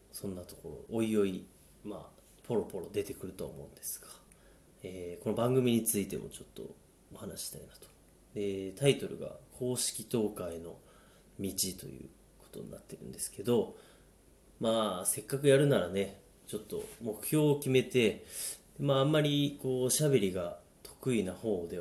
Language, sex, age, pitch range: Japanese, male, 30-49, 95-115 Hz